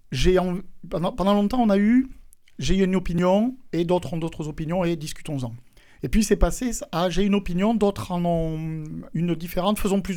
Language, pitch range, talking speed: French, 145-200 Hz, 175 wpm